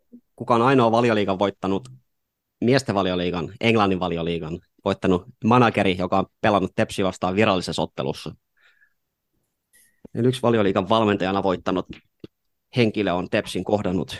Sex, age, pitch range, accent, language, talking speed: male, 30-49, 95-115 Hz, native, Finnish, 110 wpm